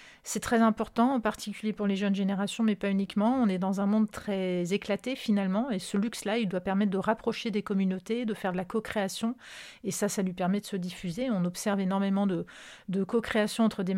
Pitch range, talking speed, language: 195-220 Hz, 220 wpm, French